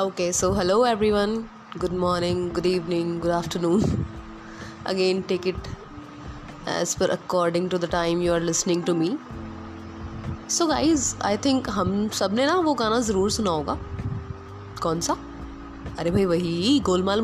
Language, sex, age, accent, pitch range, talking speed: Hindi, female, 20-39, native, 170-215 Hz, 155 wpm